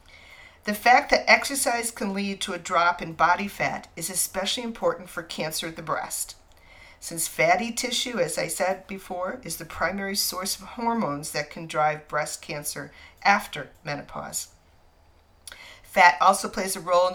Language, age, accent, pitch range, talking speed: English, 50-69, American, 150-205 Hz, 160 wpm